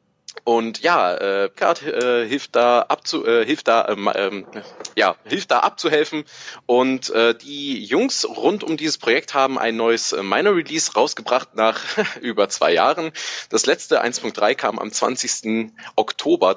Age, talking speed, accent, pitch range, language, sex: 30-49, 150 wpm, German, 115-150 Hz, German, male